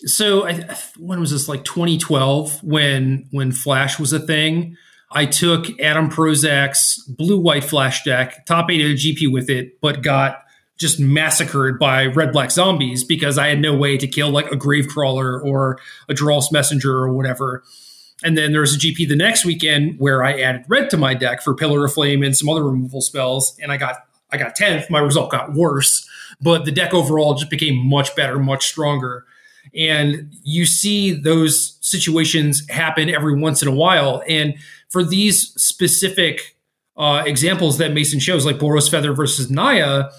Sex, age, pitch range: male, 30-49, 140-165 Hz